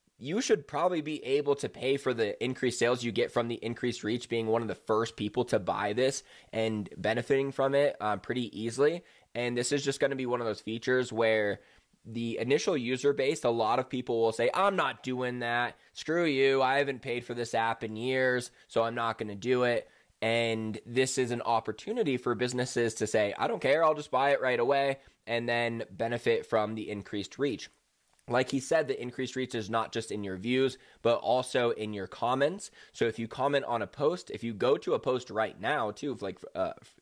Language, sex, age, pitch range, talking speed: English, male, 20-39, 110-135 Hz, 220 wpm